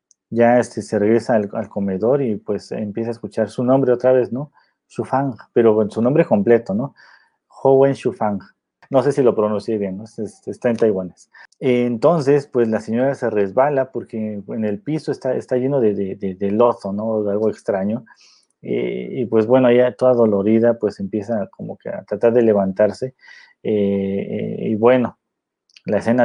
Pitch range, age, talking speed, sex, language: 105-125 Hz, 30-49, 185 wpm, male, Spanish